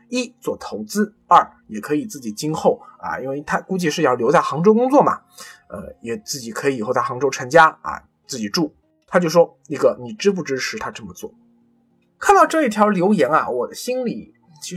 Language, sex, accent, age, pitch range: Chinese, male, native, 20-39, 160-245 Hz